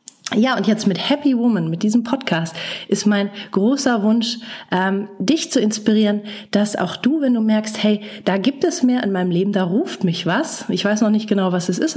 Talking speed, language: 215 wpm, German